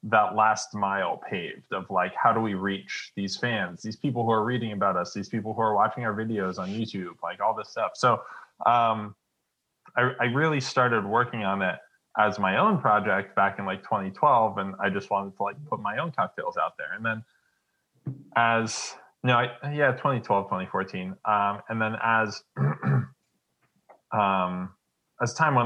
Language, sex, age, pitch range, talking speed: English, male, 20-39, 95-110 Hz, 160 wpm